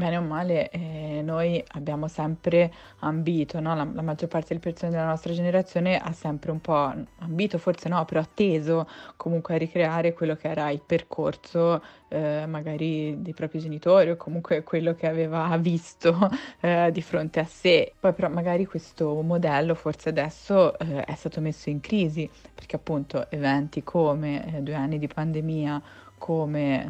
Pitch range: 150-170 Hz